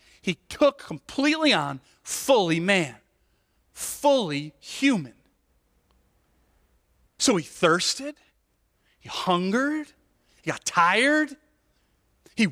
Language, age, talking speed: English, 40-59, 80 wpm